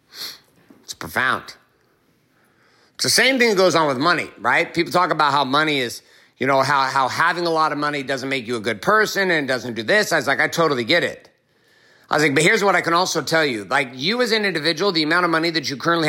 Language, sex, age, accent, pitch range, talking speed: English, male, 50-69, American, 140-190 Hz, 255 wpm